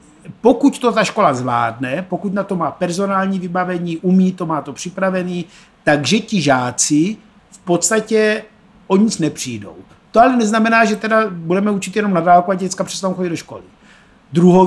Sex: male